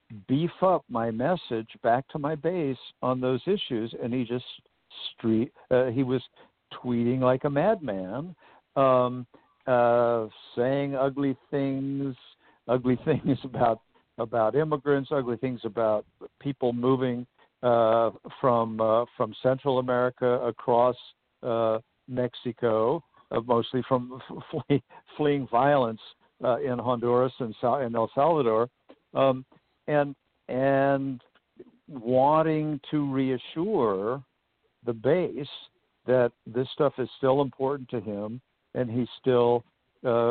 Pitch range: 120-140 Hz